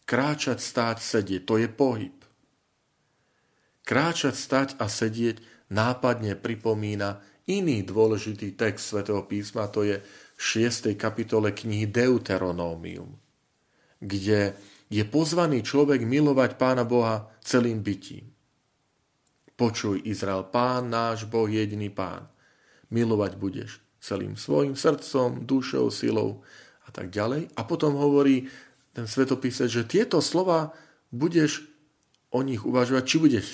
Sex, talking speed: male, 115 wpm